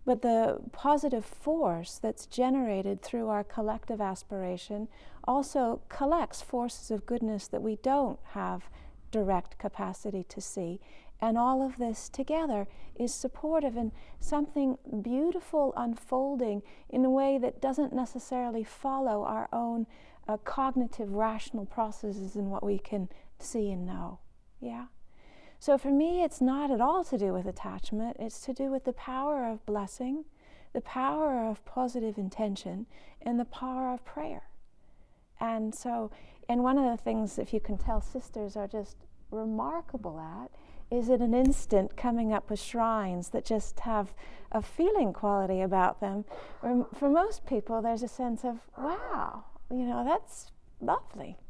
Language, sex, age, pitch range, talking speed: English, female, 40-59, 210-265 Hz, 150 wpm